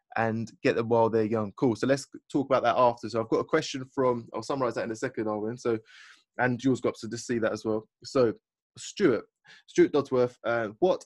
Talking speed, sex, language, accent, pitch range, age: 230 wpm, male, English, British, 115-150 Hz, 20-39